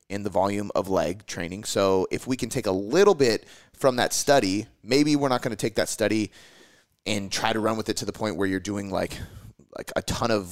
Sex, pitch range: male, 95-120 Hz